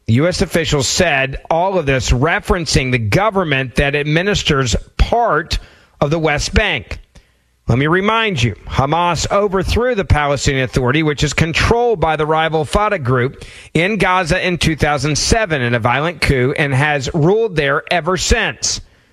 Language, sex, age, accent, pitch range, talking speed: English, male, 40-59, American, 145-190 Hz, 145 wpm